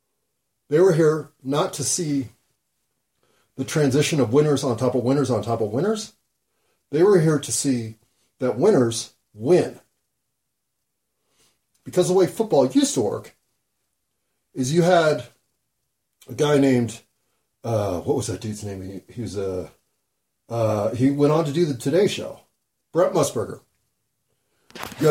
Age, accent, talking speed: 40-59, American, 145 wpm